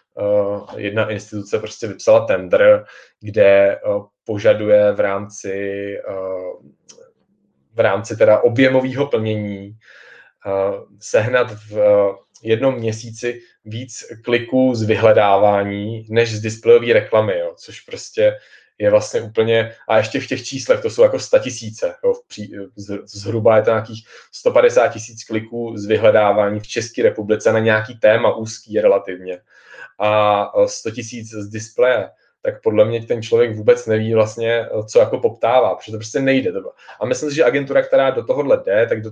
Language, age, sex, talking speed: Czech, 20-39, male, 145 wpm